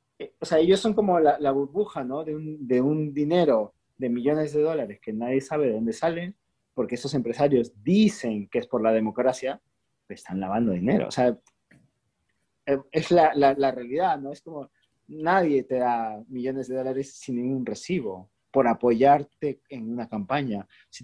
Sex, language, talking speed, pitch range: male, Spanish, 175 wpm, 105-145 Hz